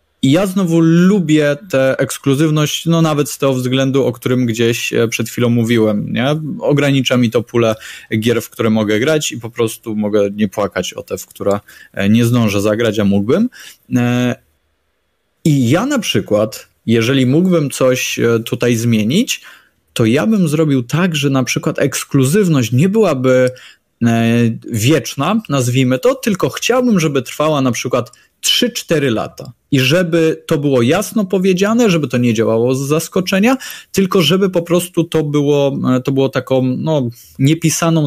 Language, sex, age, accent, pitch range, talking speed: Polish, male, 20-39, native, 120-160 Hz, 150 wpm